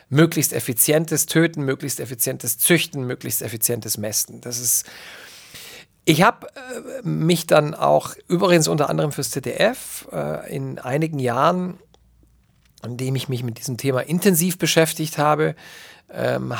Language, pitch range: German, 125-165 Hz